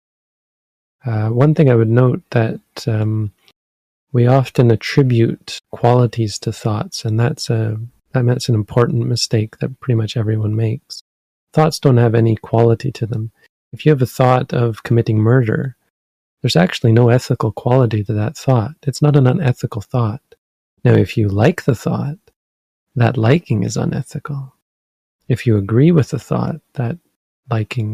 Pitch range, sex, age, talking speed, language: 110-140 Hz, male, 40-59, 155 wpm, English